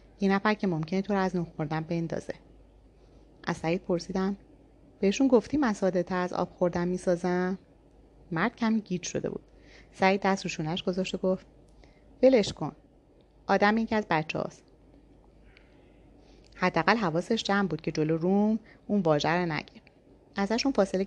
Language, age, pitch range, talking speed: Persian, 30-49, 175-225 Hz, 140 wpm